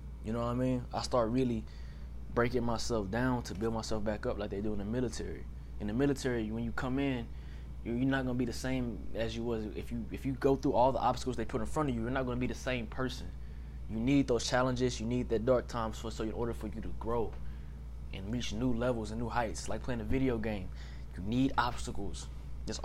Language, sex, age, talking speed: English, male, 20-39, 245 wpm